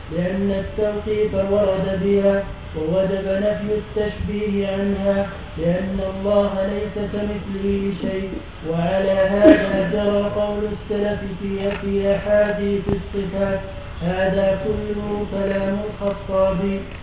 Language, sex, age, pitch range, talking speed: Arabic, male, 30-49, 195-210 Hz, 90 wpm